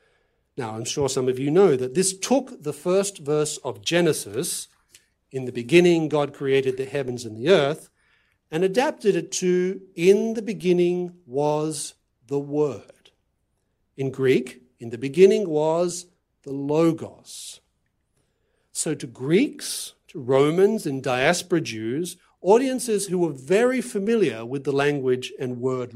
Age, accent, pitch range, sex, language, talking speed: 60-79, Australian, 135-195 Hz, male, English, 140 wpm